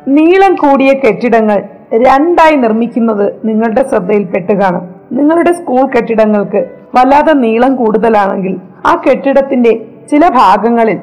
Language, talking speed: Malayalam, 90 wpm